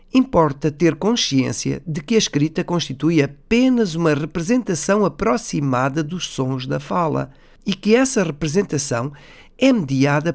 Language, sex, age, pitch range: Portuguese, male, 50-69, 140-205 Hz